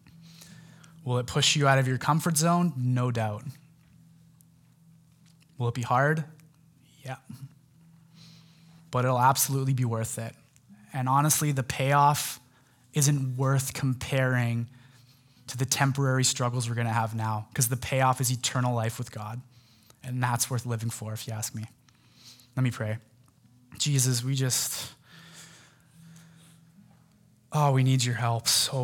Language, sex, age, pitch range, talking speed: English, male, 20-39, 125-160 Hz, 135 wpm